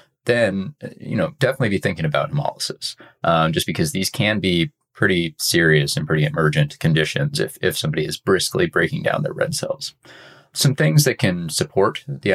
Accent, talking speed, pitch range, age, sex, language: American, 175 wpm, 80-120 Hz, 20-39, male, English